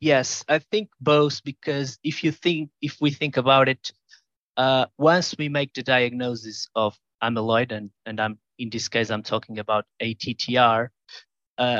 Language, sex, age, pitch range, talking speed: Portuguese, male, 20-39, 110-130 Hz, 165 wpm